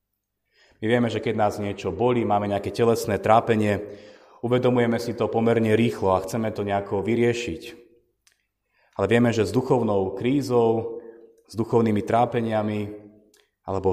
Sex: male